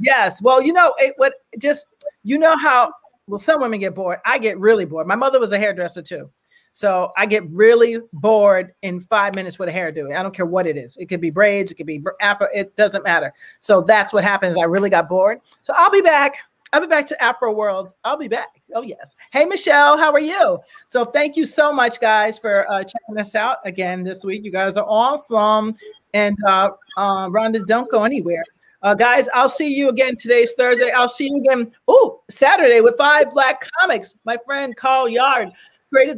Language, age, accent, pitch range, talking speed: English, 40-59, American, 195-265 Hz, 210 wpm